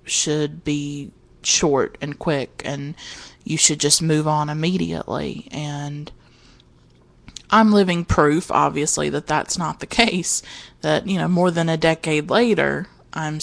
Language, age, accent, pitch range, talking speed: English, 30-49, American, 150-185 Hz, 140 wpm